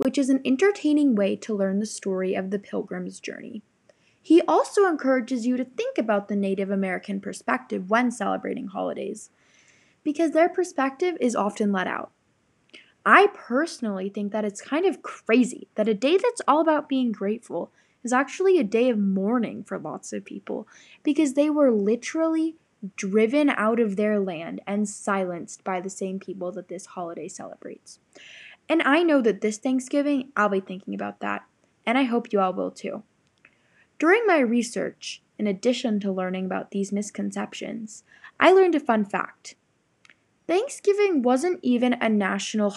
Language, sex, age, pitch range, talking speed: English, female, 10-29, 200-285 Hz, 165 wpm